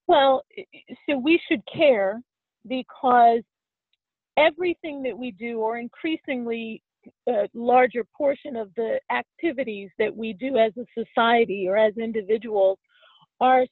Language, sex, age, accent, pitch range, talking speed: English, female, 40-59, American, 225-270 Hz, 120 wpm